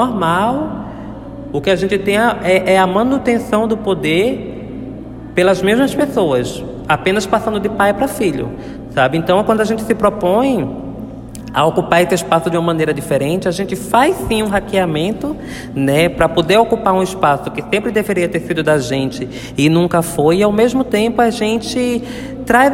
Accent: Brazilian